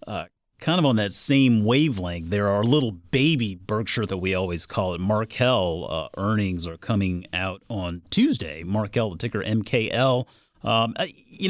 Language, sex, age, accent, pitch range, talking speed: English, male, 30-49, American, 95-125 Hz, 155 wpm